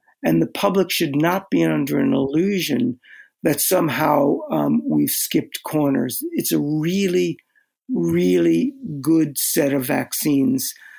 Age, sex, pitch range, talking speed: 60-79, male, 155-220 Hz, 125 wpm